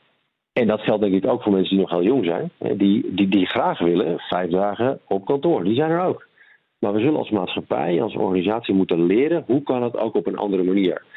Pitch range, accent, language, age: 90-110 Hz, Dutch, Dutch, 50-69